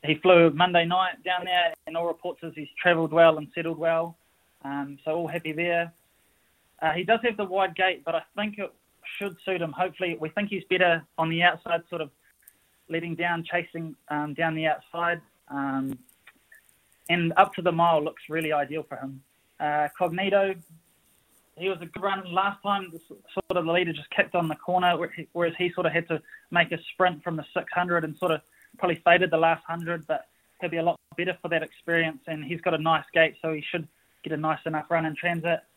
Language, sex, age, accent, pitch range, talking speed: English, male, 20-39, Australian, 155-180 Hz, 210 wpm